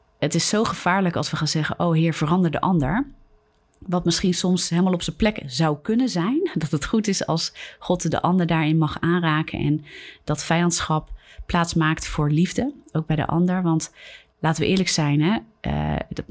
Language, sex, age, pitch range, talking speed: Dutch, female, 30-49, 150-180 Hz, 190 wpm